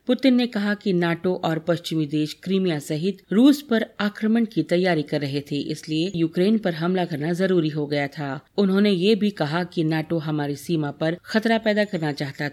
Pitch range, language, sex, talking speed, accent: 155-200 Hz, Hindi, female, 190 wpm, native